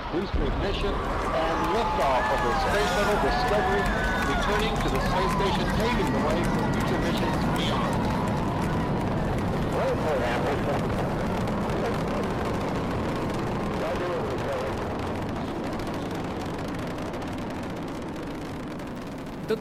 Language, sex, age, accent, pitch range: Portuguese, male, 60-79, Brazilian, 145-190 Hz